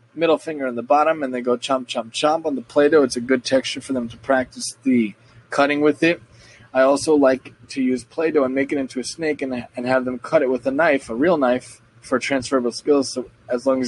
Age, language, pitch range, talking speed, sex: 20-39, English, 125-150 Hz, 245 wpm, male